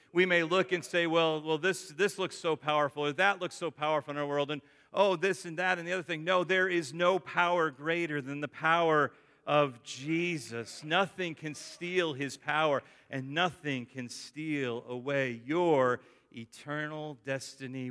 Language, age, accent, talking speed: English, 40-59, American, 180 wpm